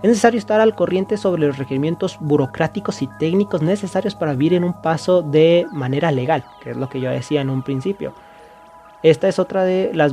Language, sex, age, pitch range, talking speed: Spanish, male, 30-49, 130-165 Hz, 200 wpm